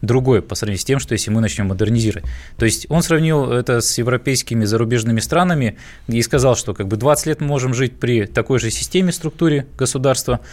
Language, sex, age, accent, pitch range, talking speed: Russian, male, 20-39, native, 110-145 Hz, 200 wpm